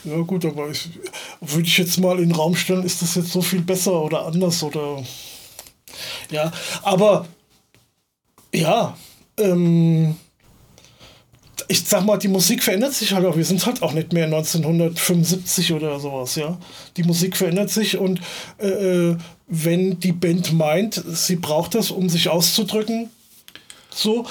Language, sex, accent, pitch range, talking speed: German, male, German, 170-205 Hz, 150 wpm